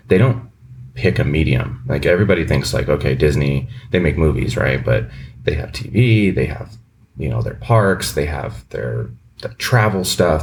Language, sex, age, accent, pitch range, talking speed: English, male, 30-49, American, 75-110 Hz, 180 wpm